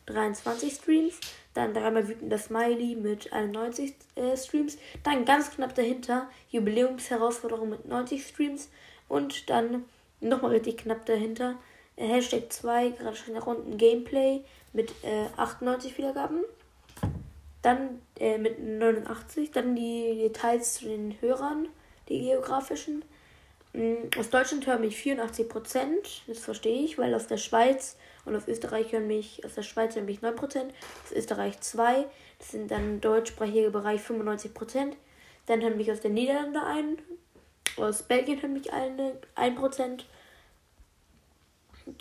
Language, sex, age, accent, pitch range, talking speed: German, female, 10-29, German, 220-260 Hz, 130 wpm